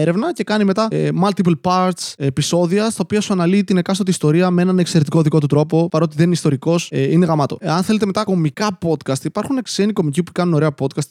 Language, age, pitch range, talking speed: Greek, 20-39, 140-180 Hz, 220 wpm